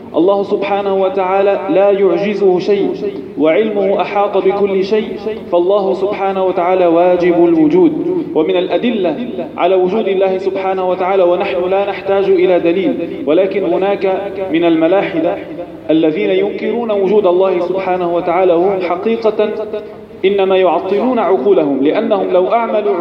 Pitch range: 185-220 Hz